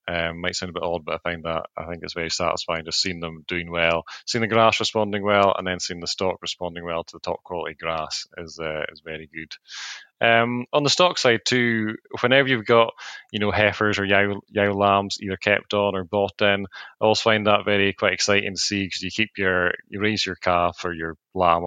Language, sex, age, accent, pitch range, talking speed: English, male, 20-39, British, 85-100 Hz, 235 wpm